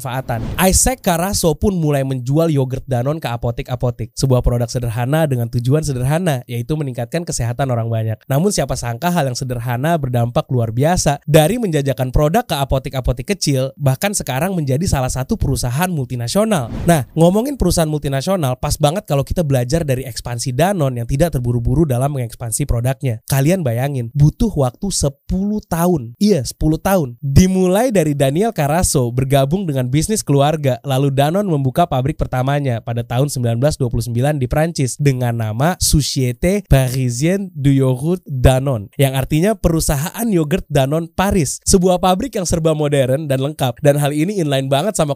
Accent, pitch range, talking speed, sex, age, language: native, 130-170 Hz, 150 wpm, male, 20-39, Indonesian